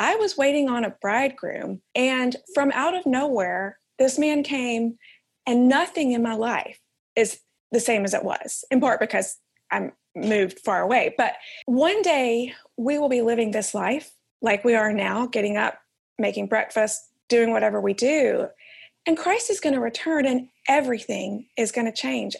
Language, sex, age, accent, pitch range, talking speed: English, female, 30-49, American, 220-280 Hz, 175 wpm